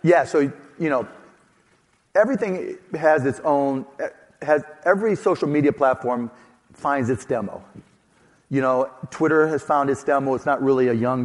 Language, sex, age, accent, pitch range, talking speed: English, male, 40-59, American, 125-150 Hz, 150 wpm